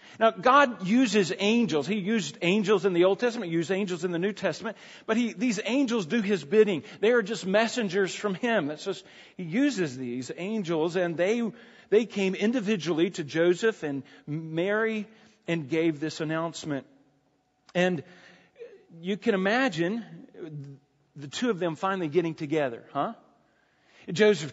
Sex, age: male, 40-59